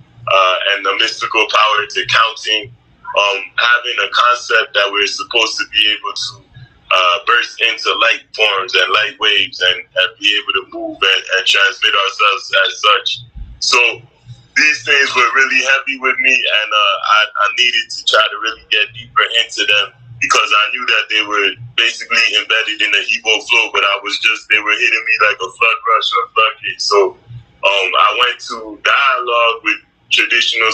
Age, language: 20-39, English